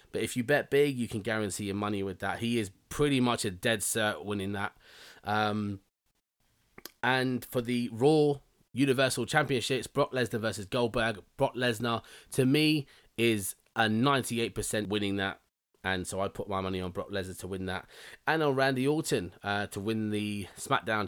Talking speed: 175 wpm